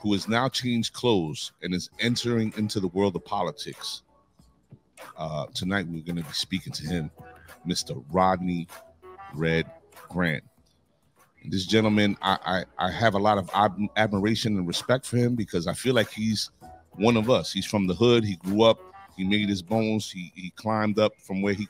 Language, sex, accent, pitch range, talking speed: English, male, American, 90-115 Hz, 185 wpm